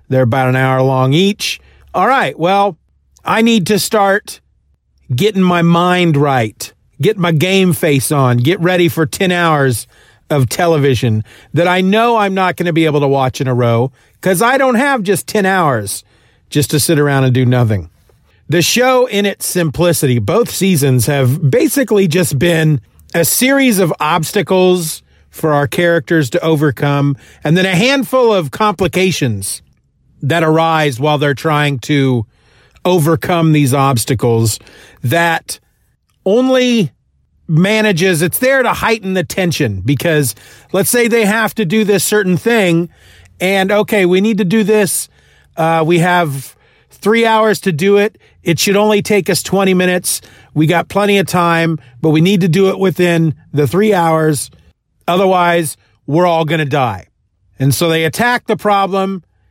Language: English